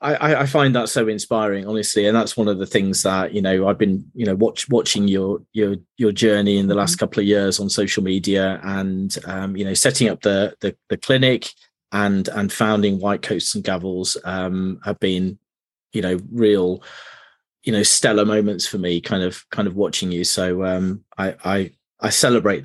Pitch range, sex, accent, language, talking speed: 95-110 Hz, male, British, English, 200 wpm